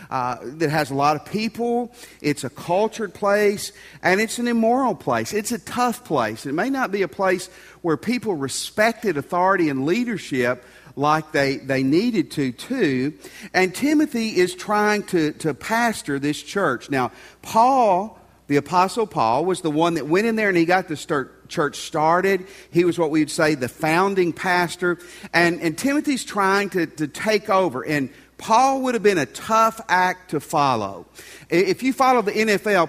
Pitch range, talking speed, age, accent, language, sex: 155-205 Hz, 175 wpm, 50-69, American, English, male